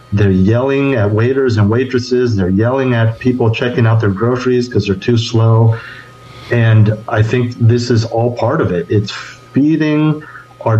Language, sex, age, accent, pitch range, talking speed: English, male, 40-59, American, 110-125 Hz, 165 wpm